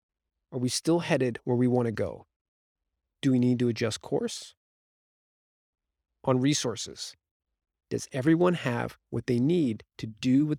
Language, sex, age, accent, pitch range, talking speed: English, male, 30-49, American, 105-160 Hz, 145 wpm